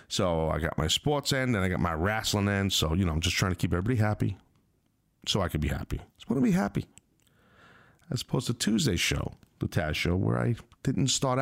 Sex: male